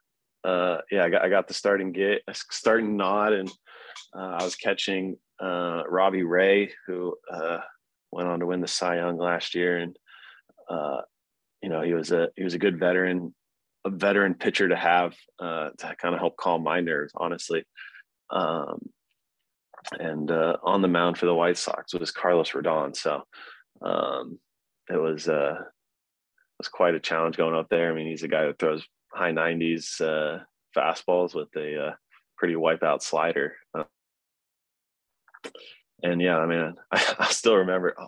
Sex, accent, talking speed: male, American, 170 wpm